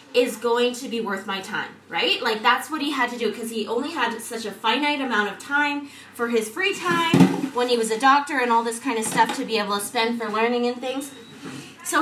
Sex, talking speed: female, 250 wpm